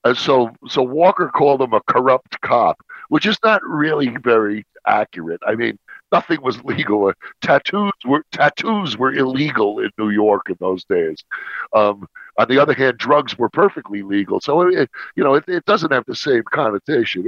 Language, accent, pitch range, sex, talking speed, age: English, American, 100-145 Hz, male, 175 wpm, 60-79